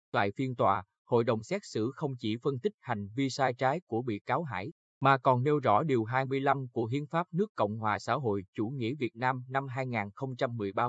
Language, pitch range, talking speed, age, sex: Vietnamese, 110-150 Hz, 215 wpm, 20-39, male